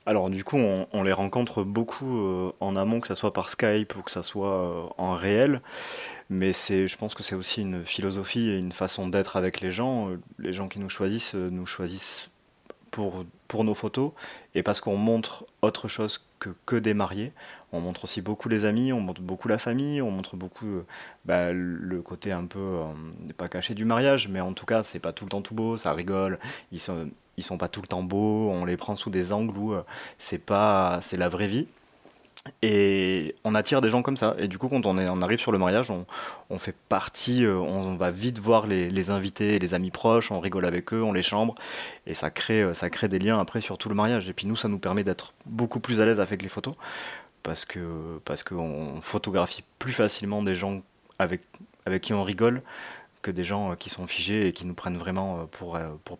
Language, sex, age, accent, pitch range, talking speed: French, male, 30-49, French, 90-110 Hz, 225 wpm